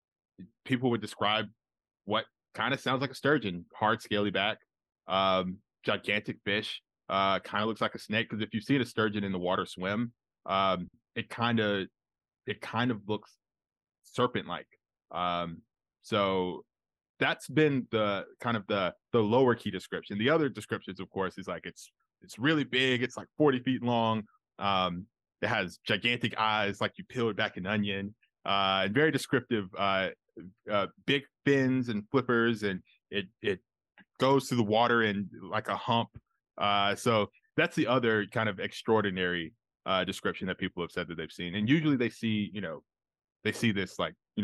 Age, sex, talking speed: 20-39, male, 175 wpm